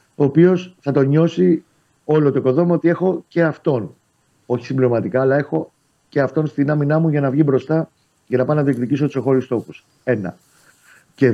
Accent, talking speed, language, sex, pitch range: native, 185 wpm, Greek, male, 115-145 Hz